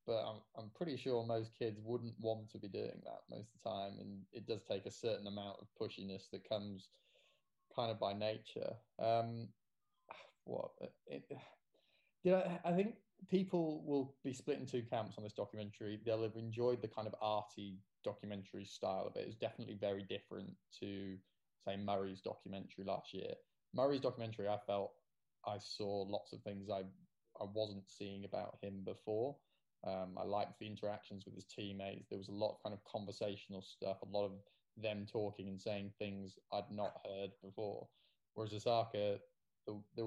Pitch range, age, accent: 100-115 Hz, 20-39, British